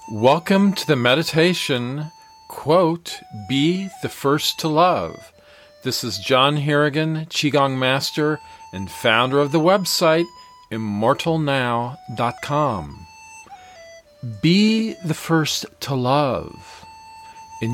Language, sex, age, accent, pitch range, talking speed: English, male, 40-59, American, 115-160 Hz, 95 wpm